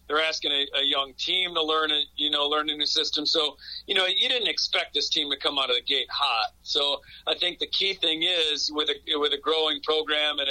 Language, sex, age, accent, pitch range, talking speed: English, male, 40-59, American, 140-160 Hz, 250 wpm